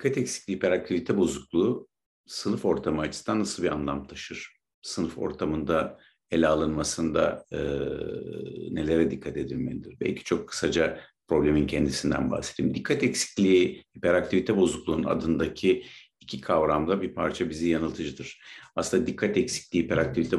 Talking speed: 120 wpm